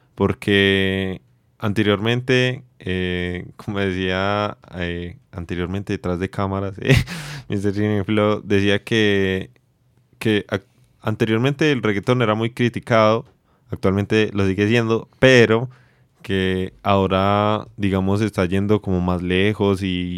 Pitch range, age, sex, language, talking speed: 95-115 Hz, 20-39, male, Spanish, 110 wpm